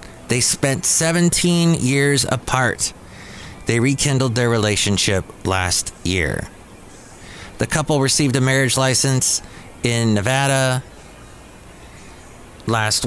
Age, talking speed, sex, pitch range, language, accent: 30-49, 90 wpm, male, 115-150 Hz, English, American